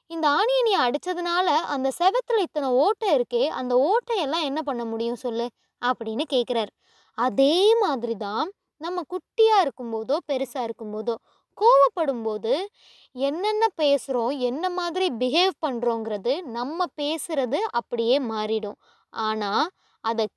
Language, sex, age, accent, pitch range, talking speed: Tamil, female, 20-39, native, 235-330 Hz, 105 wpm